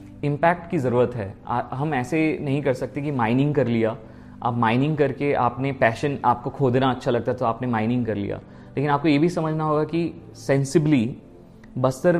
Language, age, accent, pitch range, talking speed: Hindi, 30-49, native, 125-160 Hz, 180 wpm